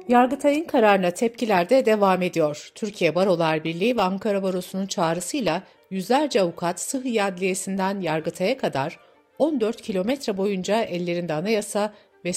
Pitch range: 170-225 Hz